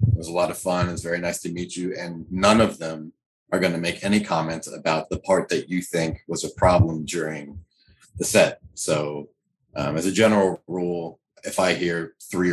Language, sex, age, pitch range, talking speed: English, male, 30-49, 80-100 Hz, 215 wpm